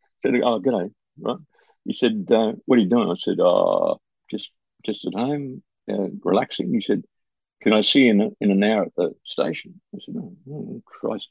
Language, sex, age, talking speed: English, male, 50-69, 205 wpm